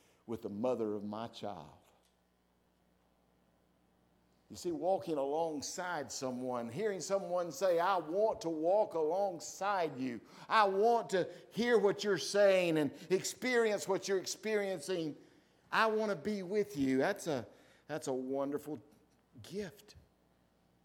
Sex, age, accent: male, 60-79, American